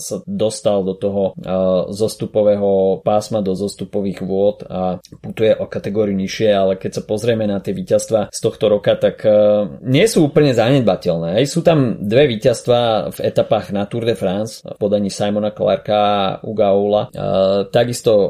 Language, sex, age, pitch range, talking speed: Slovak, male, 20-39, 100-120 Hz, 155 wpm